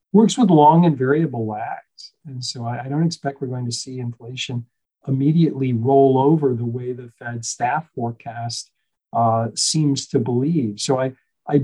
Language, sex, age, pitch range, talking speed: English, male, 50-69, 130-165 Hz, 170 wpm